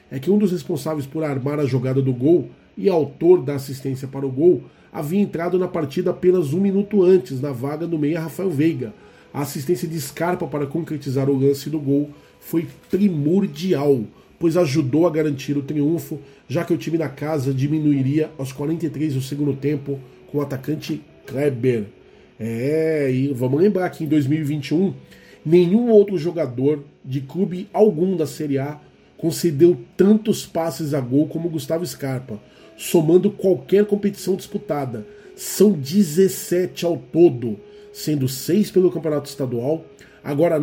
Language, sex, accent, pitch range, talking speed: Portuguese, male, Brazilian, 140-175 Hz, 155 wpm